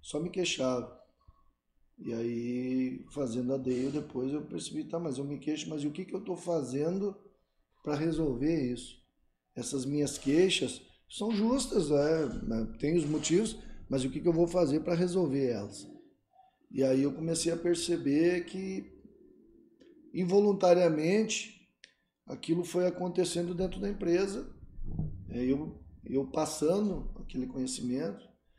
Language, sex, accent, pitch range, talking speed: Portuguese, male, Brazilian, 125-175 Hz, 135 wpm